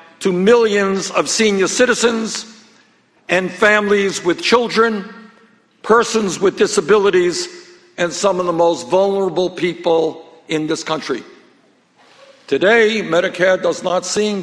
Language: English